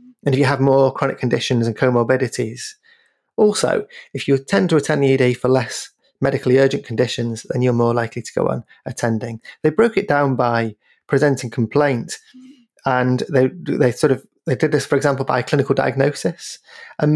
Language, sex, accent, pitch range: English, male, British, 125-155 Hz